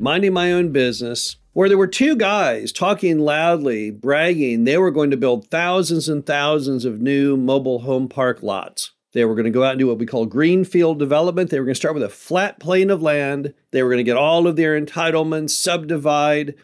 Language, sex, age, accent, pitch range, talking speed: English, male, 50-69, American, 140-175 Hz, 215 wpm